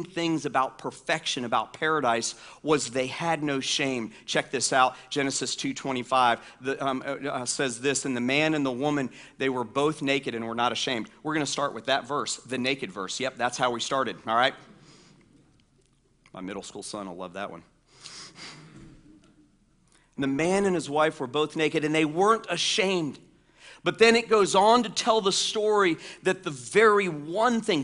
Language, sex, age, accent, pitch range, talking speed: English, male, 40-59, American, 125-170 Hz, 185 wpm